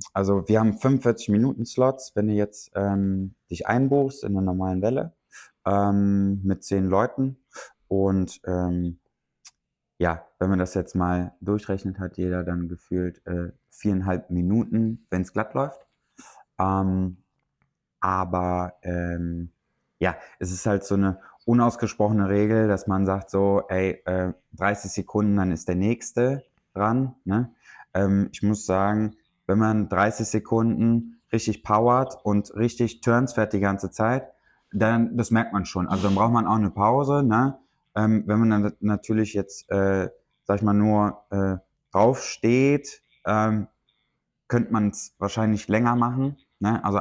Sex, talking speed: male, 145 wpm